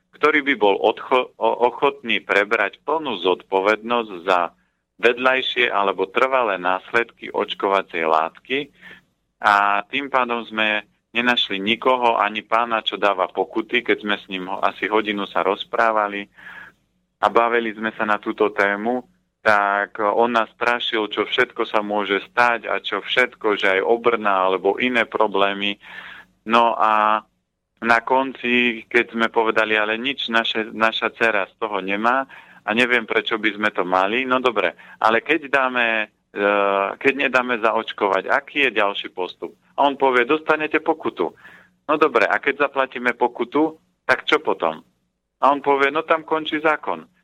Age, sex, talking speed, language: 40-59, male, 145 wpm, Slovak